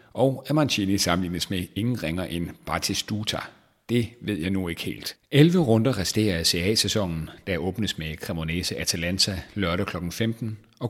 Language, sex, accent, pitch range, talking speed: Danish, male, native, 90-115 Hz, 160 wpm